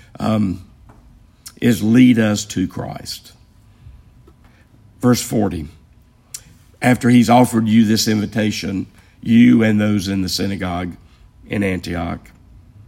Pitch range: 100-115 Hz